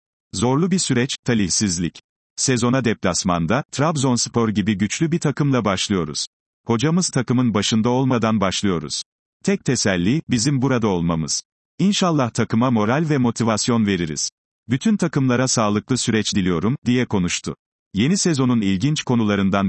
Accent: native